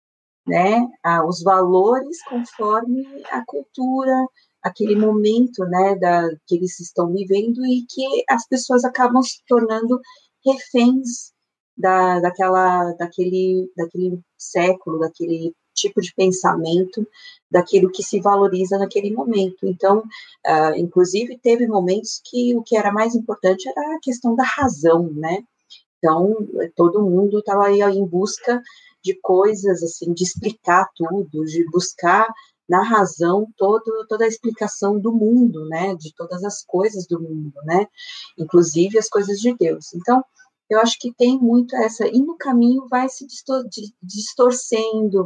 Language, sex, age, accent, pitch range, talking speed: Portuguese, female, 30-49, Brazilian, 180-240 Hz, 135 wpm